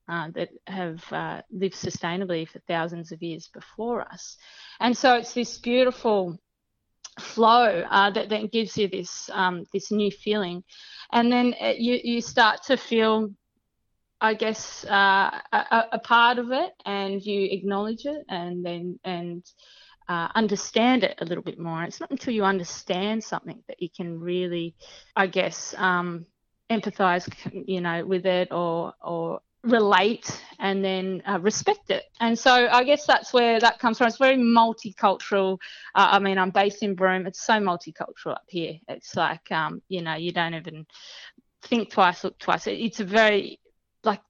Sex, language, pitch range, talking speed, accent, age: female, English, 180-225 Hz, 170 wpm, Australian, 20-39